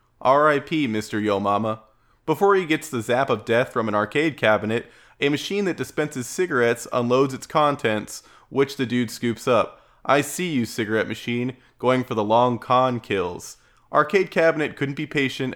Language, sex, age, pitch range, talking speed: English, male, 20-39, 110-145 Hz, 170 wpm